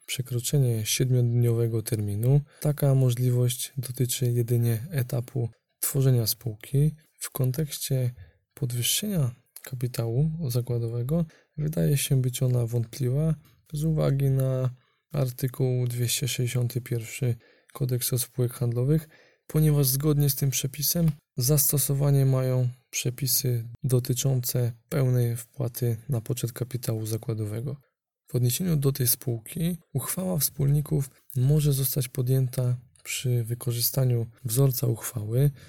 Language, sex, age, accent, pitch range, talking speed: Polish, male, 20-39, native, 120-145 Hz, 95 wpm